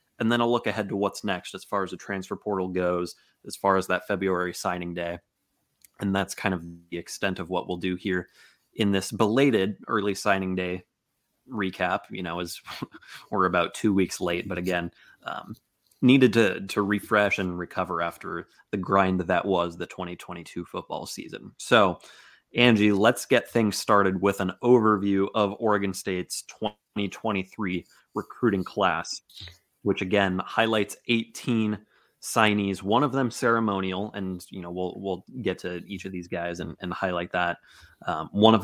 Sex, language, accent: male, English, American